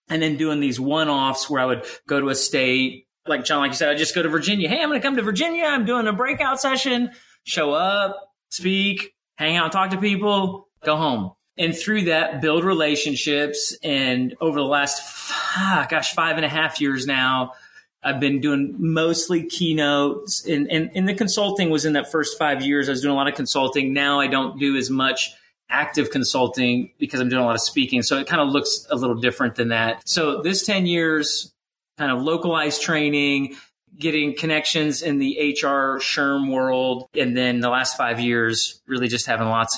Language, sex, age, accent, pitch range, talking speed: English, male, 30-49, American, 130-180 Hz, 200 wpm